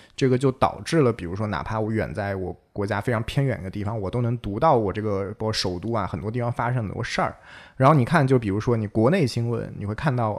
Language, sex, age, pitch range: Chinese, male, 20-39, 105-135 Hz